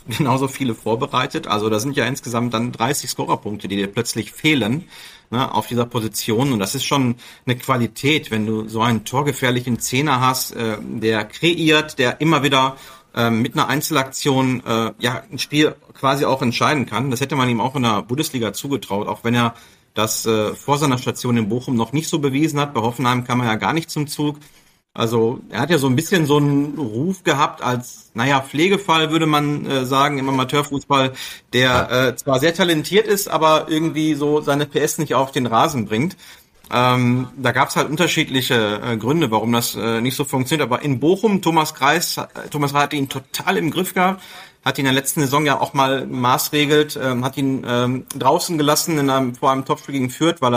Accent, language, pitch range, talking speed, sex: German, German, 120-150 Hz, 200 wpm, male